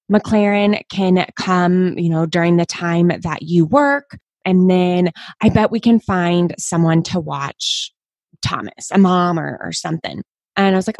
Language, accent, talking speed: English, American, 170 wpm